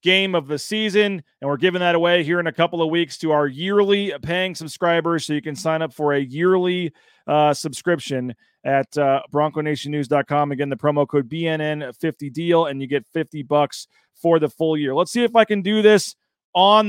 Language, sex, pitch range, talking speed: English, male, 160-195 Hz, 205 wpm